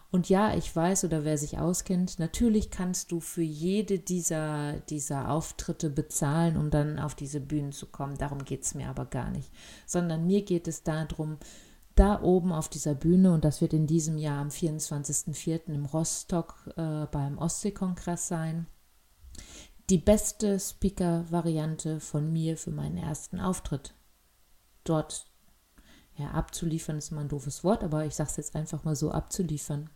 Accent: German